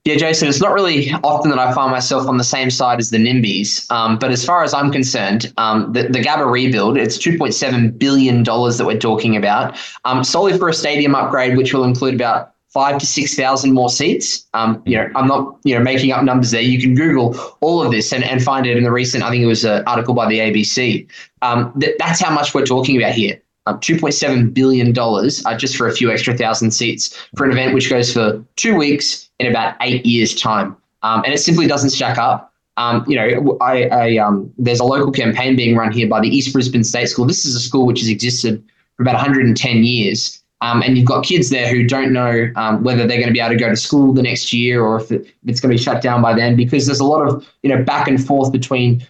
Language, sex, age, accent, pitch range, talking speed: English, male, 20-39, Australian, 115-135 Hz, 245 wpm